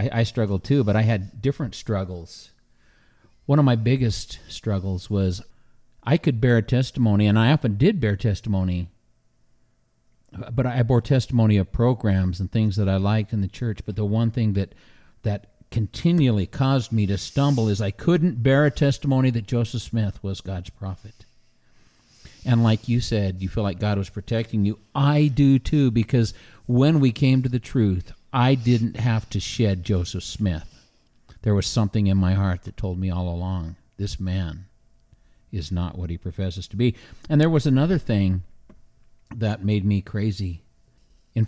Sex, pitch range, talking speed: male, 95-125 Hz, 175 wpm